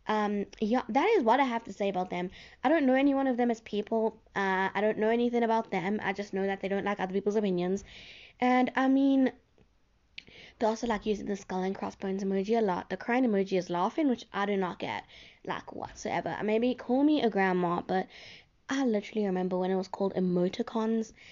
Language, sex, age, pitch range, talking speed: English, female, 10-29, 195-245 Hz, 215 wpm